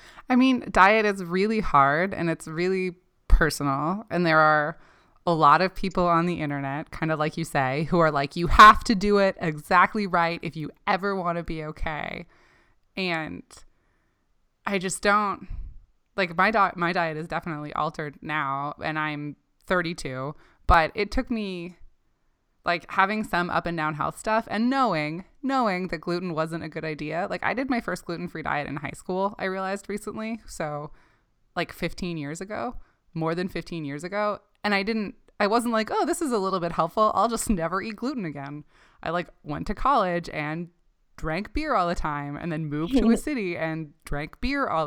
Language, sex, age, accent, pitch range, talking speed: English, female, 20-39, American, 155-200 Hz, 190 wpm